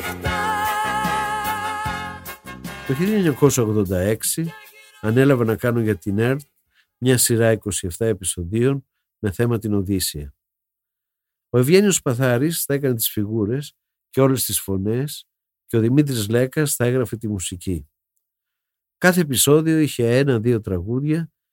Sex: male